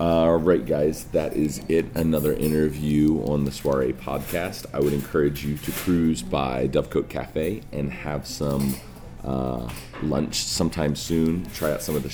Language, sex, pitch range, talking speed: English, male, 65-80 Hz, 170 wpm